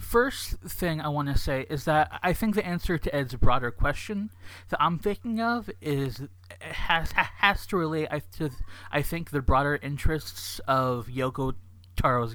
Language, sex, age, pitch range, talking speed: English, male, 20-39, 100-150 Hz, 165 wpm